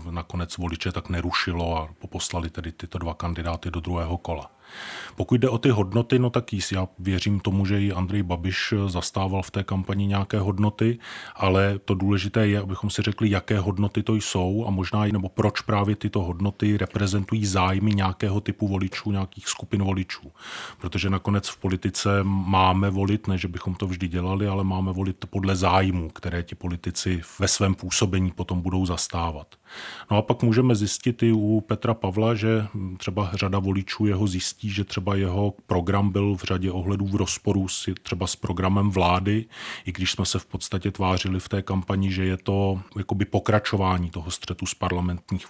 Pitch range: 95-105 Hz